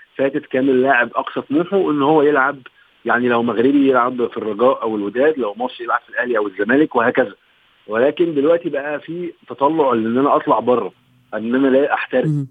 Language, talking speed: Arabic, 175 wpm